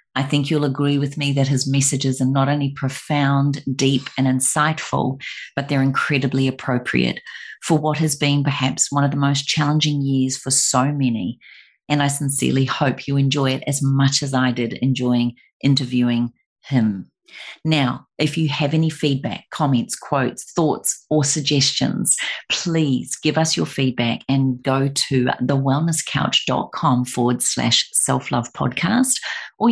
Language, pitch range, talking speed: English, 130-145 Hz, 150 wpm